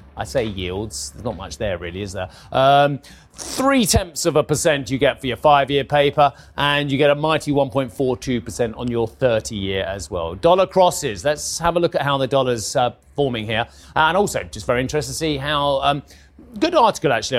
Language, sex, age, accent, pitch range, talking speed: English, male, 30-49, British, 120-160 Hz, 195 wpm